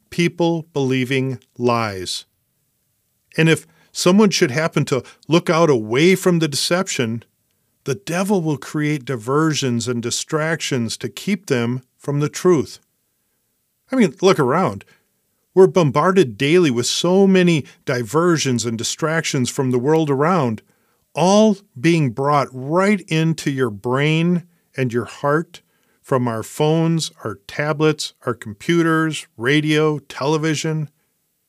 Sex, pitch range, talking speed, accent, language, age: male, 130-175 Hz, 120 wpm, American, English, 50-69